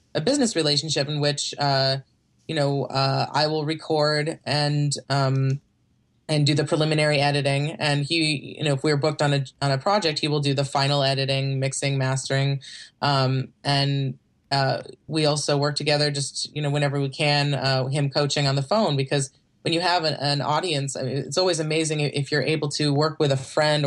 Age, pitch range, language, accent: 20-39, 135-155 Hz, English, American